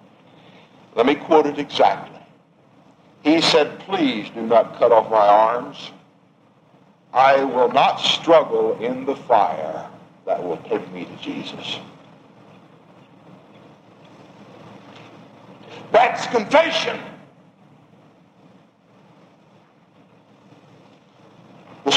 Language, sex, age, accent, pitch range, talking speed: English, male, 60-79, American, 160-230 Hz, 80 wpm